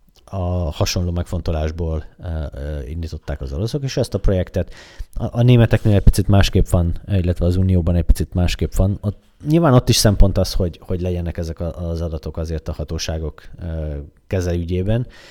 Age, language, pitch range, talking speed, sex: 30-49, Hungarian, 80-95 Hz, 150 wpm, male